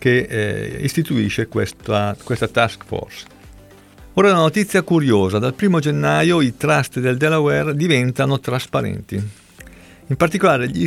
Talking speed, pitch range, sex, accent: 125 wpm, 105-135 Hz, male, native